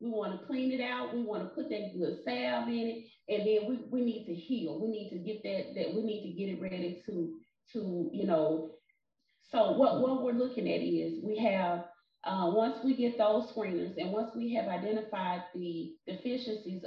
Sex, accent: female, American